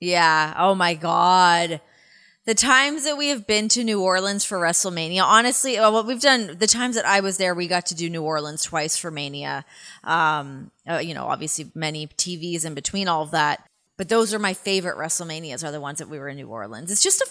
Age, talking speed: 20-39, 220 wpm